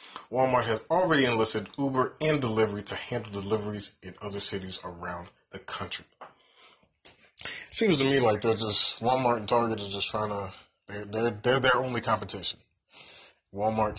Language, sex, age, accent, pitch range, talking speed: English, male, 20-39, American, 95-115 Hz, 160 wpm